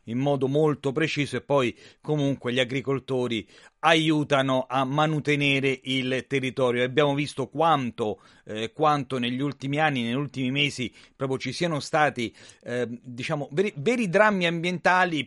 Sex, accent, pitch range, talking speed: male, native, 120-155 Hz, 140 wpm